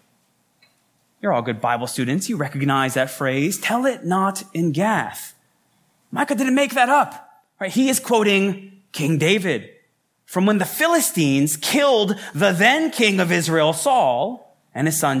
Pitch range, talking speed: 160-230 Hz, 155 wpm